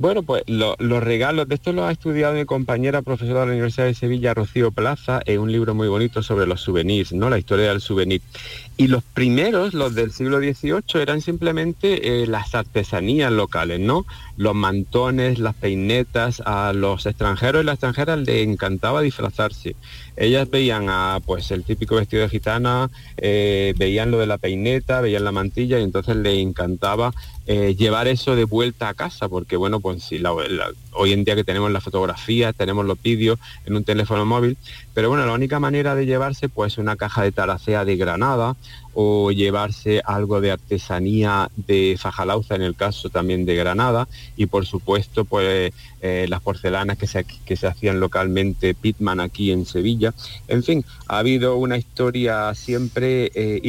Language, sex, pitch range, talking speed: Spanish, male, 100-125 Hz, 180 wpm